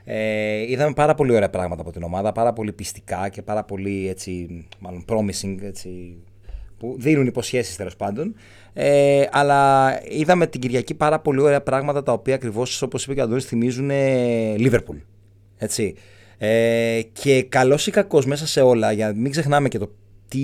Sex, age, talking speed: male, 30-49, 170 wpm